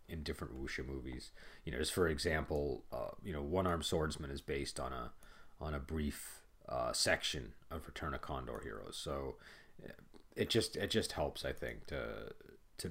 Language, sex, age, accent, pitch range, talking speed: English, male, 30-49, American, 70-90 Hz, 175 wpm